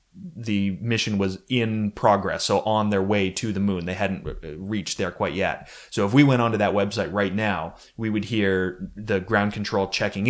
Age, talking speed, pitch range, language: 30-49, 200 wpm, 100-130 Hz, English